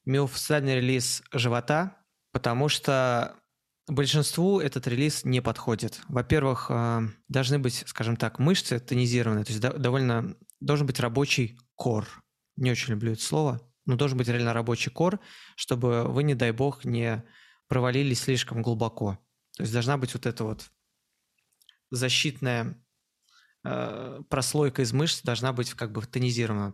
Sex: male